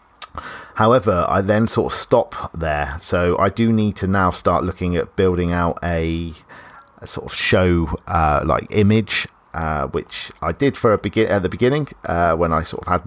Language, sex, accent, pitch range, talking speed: English, male, British, 80-100 Hz, 195 wpm